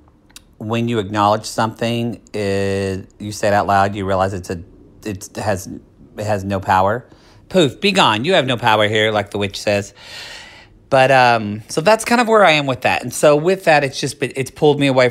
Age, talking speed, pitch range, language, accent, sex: 40-59, 215 wpm, 110-150 Hz, English, American, male